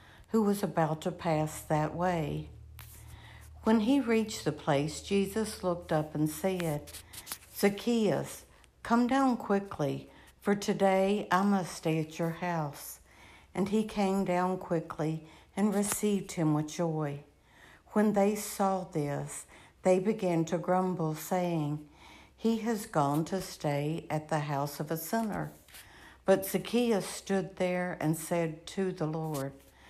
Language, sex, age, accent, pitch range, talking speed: English, female, 60-79, American, 155-195 Hz, 135 wpm